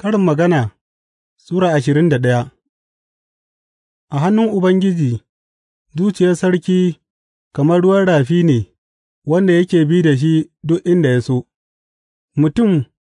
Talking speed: 85 wpm